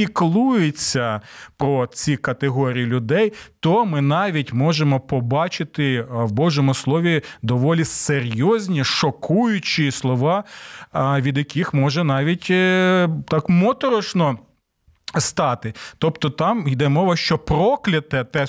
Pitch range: 120-165 Hz